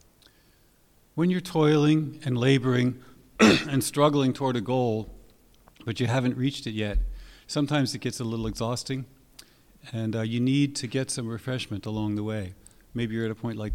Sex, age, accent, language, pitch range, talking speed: male, 50-69, American, English, 110-130 Hz, 170 wpm